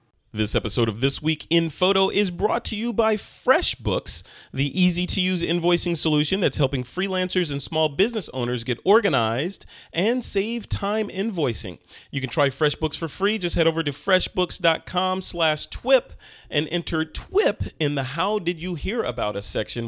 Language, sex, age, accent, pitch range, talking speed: English, male, 30-49, American, 125-175 Hz, 165 wpm